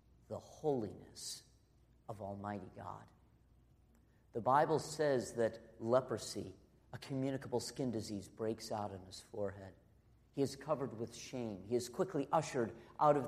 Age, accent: 50-69, American